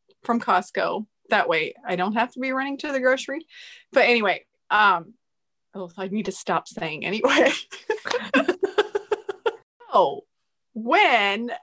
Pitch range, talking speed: 205-280 Hz, 130 wpm